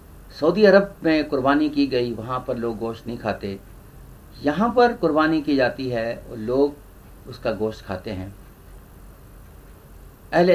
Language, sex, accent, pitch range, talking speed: Hindi, male, native, 100-145 Hz, 135 wpm